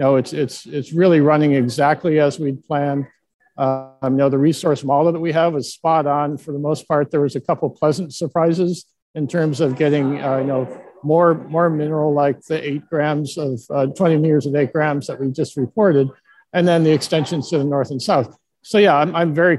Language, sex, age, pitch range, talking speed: English, male, 60-79, 140-160 Hz, 225 wpm